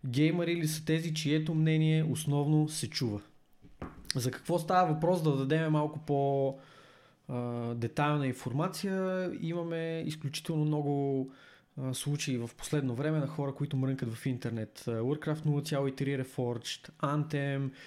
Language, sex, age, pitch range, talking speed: Bulgarian, male, 20-39, 130-155 Hz, 125 wpm